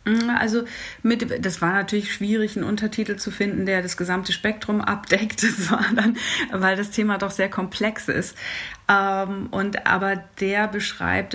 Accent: German